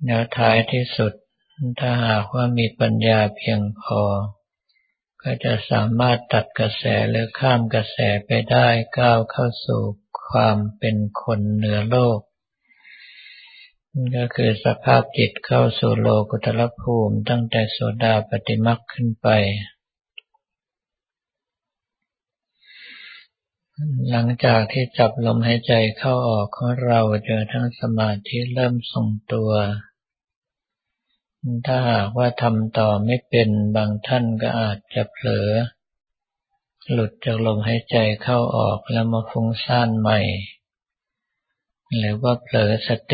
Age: 60-79